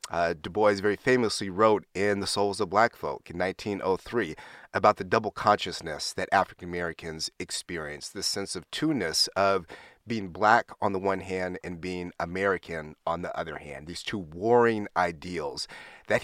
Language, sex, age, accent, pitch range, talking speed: English, male, 30-49, American, 90-105 Hz, 165 wpm